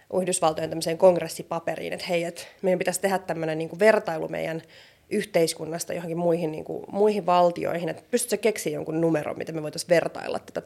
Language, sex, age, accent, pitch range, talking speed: Finnish, female, 20-39, native, 170-200 Hz, 170 wpm